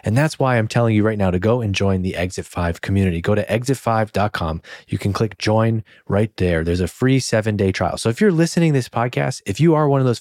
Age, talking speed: 20-39, 255 wpm